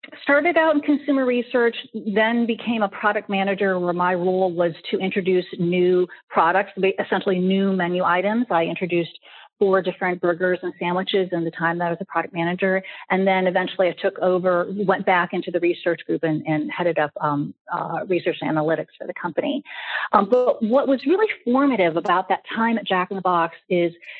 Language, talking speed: English, 190 wpm